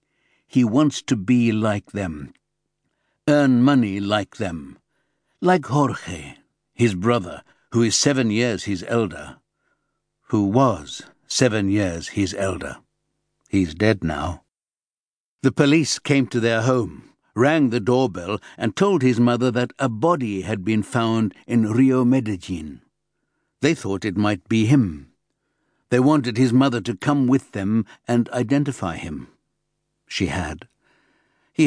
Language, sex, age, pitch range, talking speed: English, male, 60-79, 100-130 Hz, 135 wpm